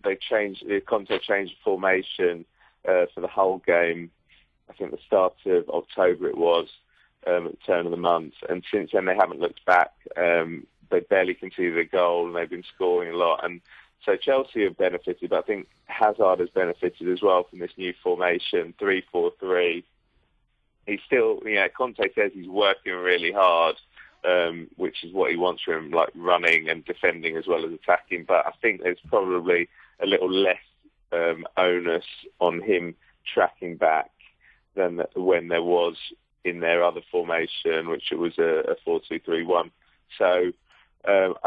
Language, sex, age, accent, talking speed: English, male, 20-39, British, 175 wpm